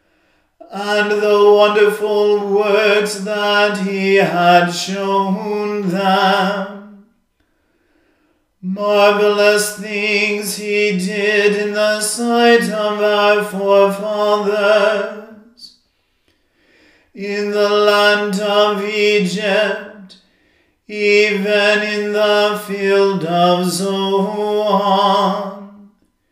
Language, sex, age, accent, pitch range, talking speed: English, male, 40-59, American, 200-210 Hz, 70 wpm